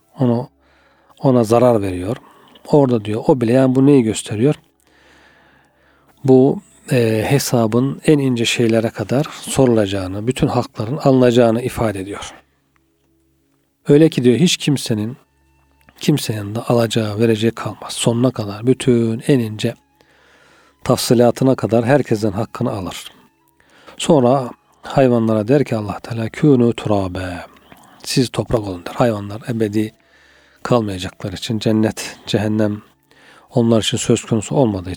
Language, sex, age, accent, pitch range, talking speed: Turkish, male, 40-59, native, 105-125 Hz, 115 wpm